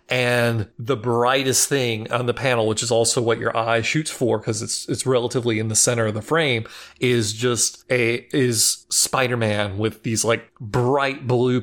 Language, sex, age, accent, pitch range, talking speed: English, male, 30-49, American, 115-130 Hz, 180 wpm